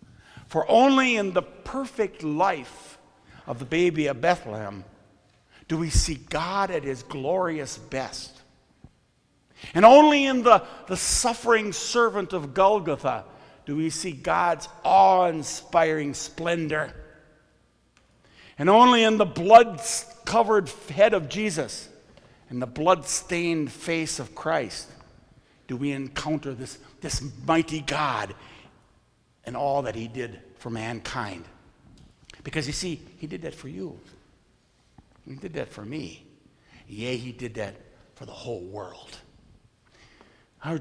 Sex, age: male, 50-69